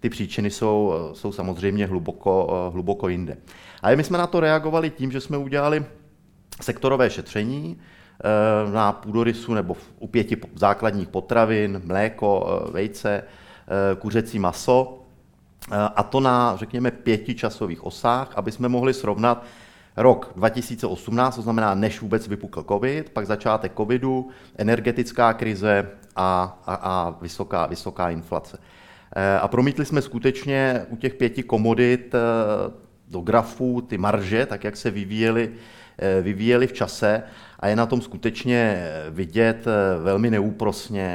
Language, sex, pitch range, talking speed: Czech, male, 95-120 Hz, 120 wpm